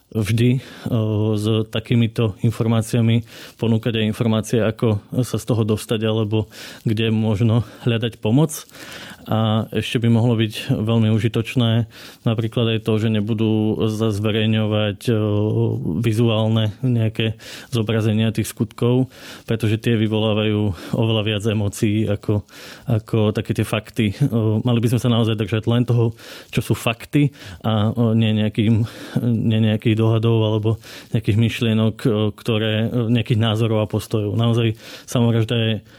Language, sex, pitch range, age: Slovak, male, 110-115 Hz, 20-39